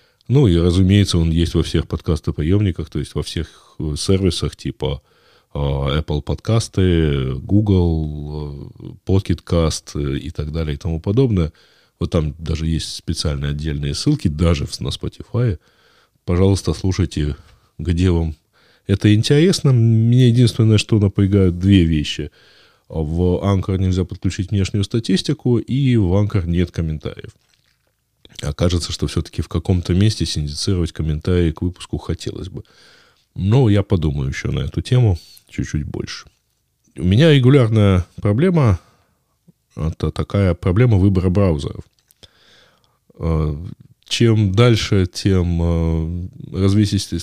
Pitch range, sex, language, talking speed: 80-105 Hz, male, Russian, 115 wpm